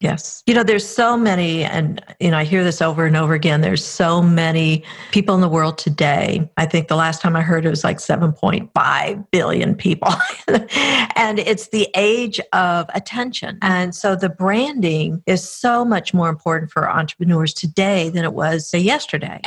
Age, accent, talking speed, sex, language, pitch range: 50-69, American, 180 wpm, female, English, 170-210 Hz